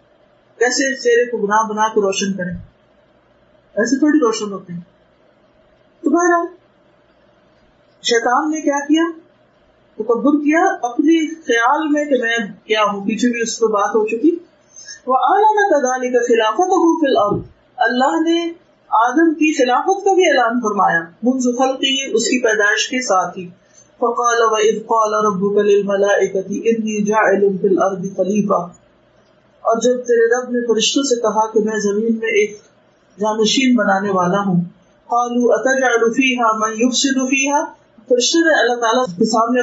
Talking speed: 100 wpm